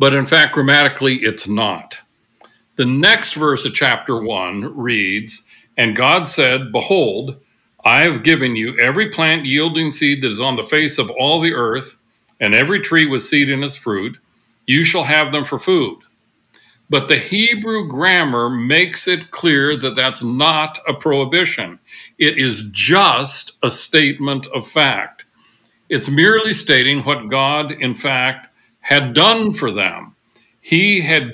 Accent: American